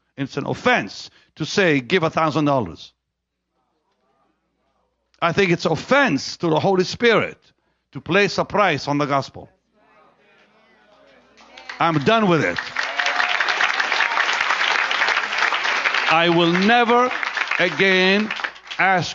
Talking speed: 105 wpm